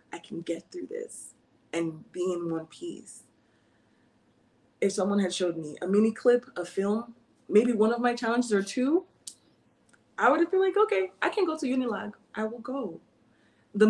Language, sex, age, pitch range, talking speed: English, female, 20-39, 180-230 Hz, 180 wpm